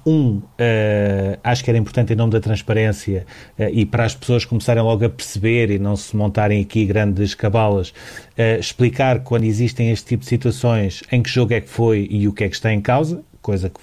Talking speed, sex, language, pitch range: 205 wpm, male, Portuguese, 105-120 Hz